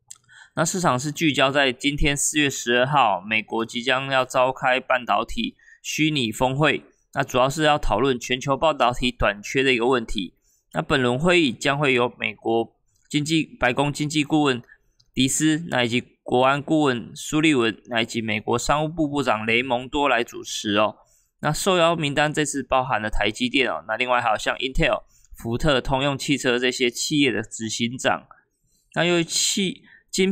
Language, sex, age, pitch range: Chinese, male, 20-39, 120-150 Hz